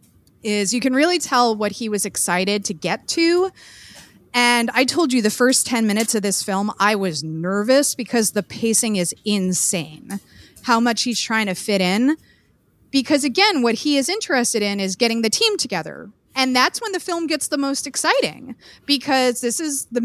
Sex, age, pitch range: female, 30-49, 205-265 Hz